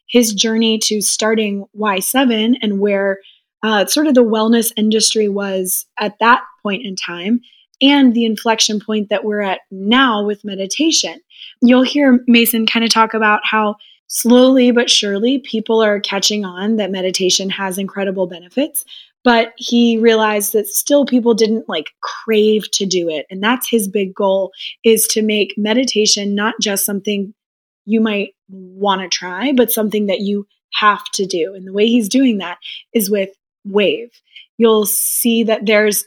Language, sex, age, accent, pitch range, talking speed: English, female, 20-39, American, 200-225 Hz, 165 wpm